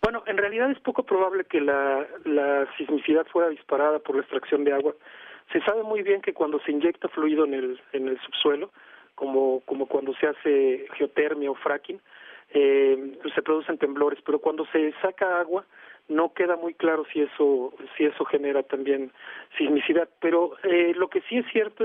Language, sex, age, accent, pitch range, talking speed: Spanish, male, 40-59, Mexican, 145-195 Hz, 180 wpm